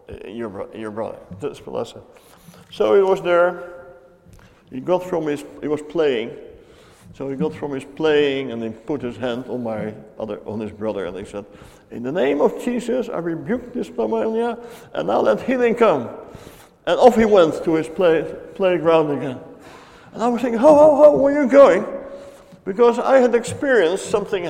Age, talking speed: 60-79, 185 wpm